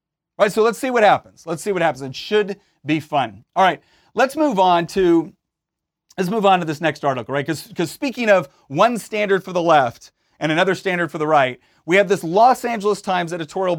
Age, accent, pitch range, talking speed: 30-49, American, 165-210 Hz, 220 wpm